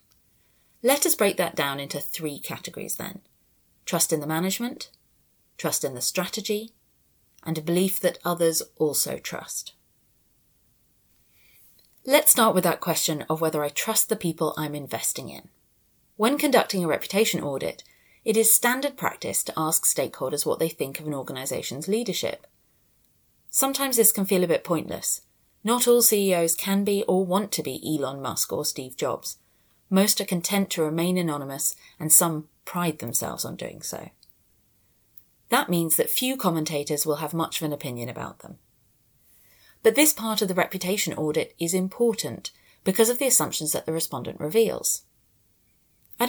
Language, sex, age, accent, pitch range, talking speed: English, female, 30-49, British, 150-210 Hz, 160 wpm